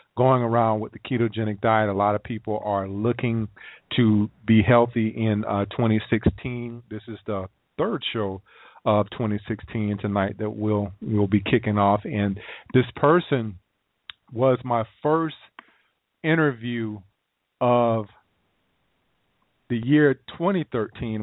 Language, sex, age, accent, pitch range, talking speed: English, male, 40-59, American, 100-120 Hz, 120 wpm